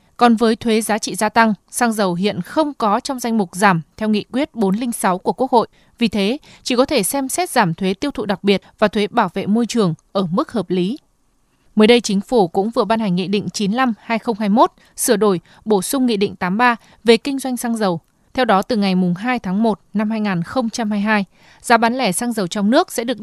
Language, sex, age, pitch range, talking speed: Vietnamese, female, 20-39, 200-245 Hz, 225 wpm